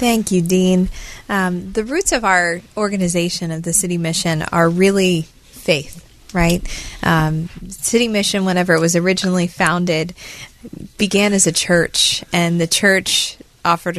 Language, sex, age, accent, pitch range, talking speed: English, female, 20-39, American, 165-190 Hz, 140 wpm